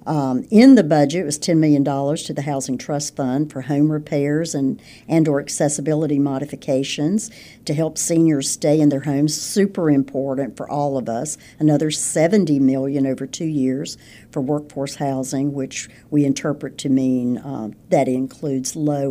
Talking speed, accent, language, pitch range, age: 165 wpm, American, English, 130-155 Hz, 60-79